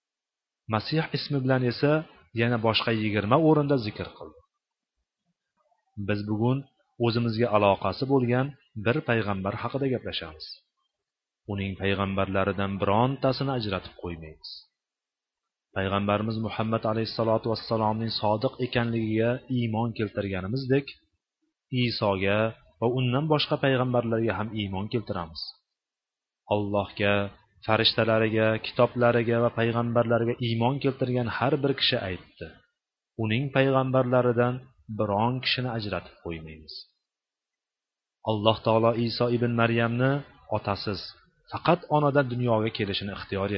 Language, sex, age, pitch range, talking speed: Bulgarian, male, 30-49, 105-130 Hz, 105 wpm